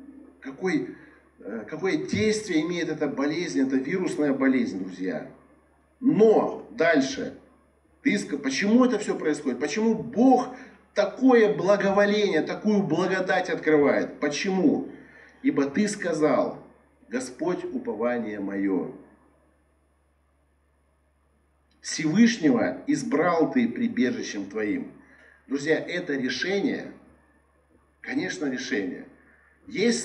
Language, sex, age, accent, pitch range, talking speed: Russian, male, 50-69, native, 145-230 Hz, 80 wpm